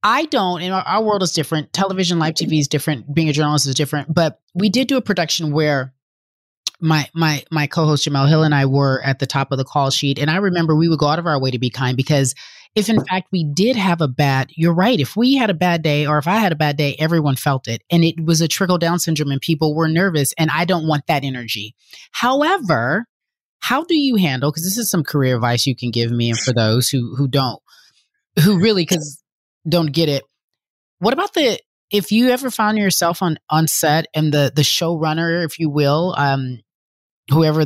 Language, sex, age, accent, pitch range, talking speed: English, female, 30-49, American, 140-180 Hz, 230 wpm